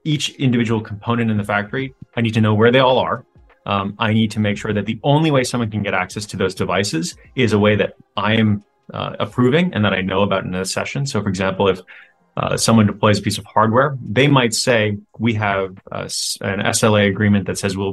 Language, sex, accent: English, male, American